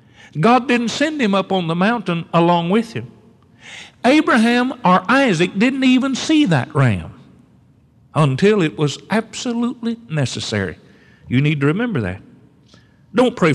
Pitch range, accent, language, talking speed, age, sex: 150-225 Hz, American, English, 135 wpm, 50-69, male